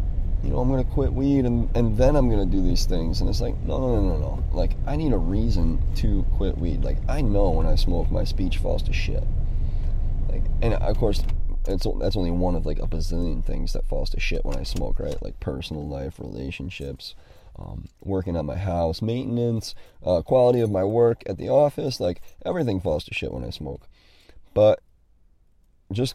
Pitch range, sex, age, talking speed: 85-115 Hz, male, 30-49, 205 wpm